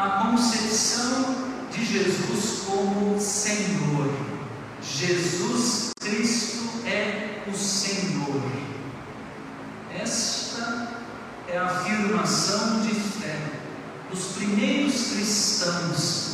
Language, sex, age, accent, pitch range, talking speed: Portuguese, male, 50-69, Brazilian, 170-235 Hz, 75 wpm